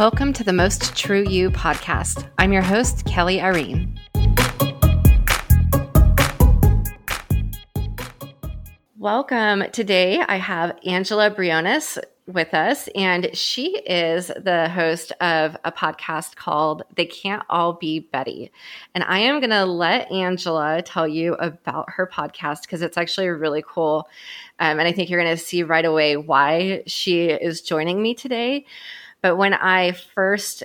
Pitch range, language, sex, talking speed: 155-195 Hz, English, female, 140 wpm